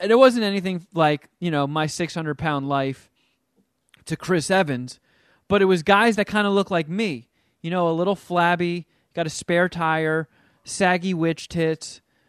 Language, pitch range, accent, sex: English, 145-185 Hz, American, male